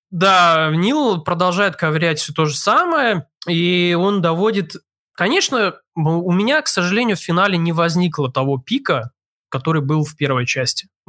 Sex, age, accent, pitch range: male, 20-39, native, 145-185 Hz